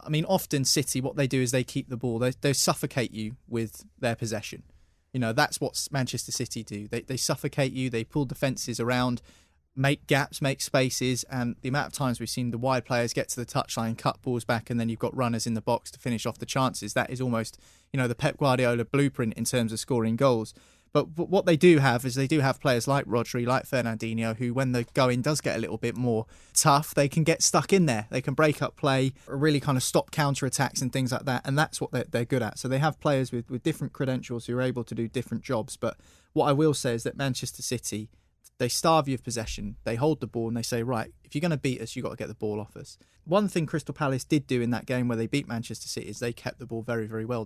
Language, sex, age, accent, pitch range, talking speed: English, male, 20-39, British, 115-140 Hz, 265 wpm